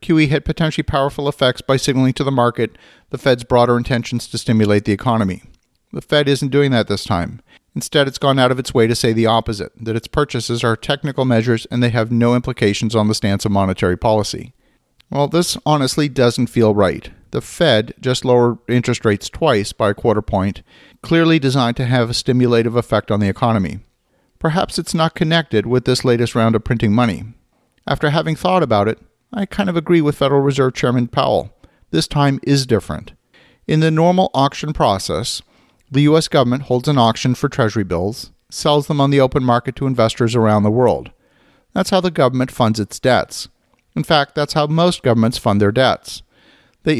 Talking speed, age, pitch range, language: 195 wpm, 50-69, 115-145 Hz, English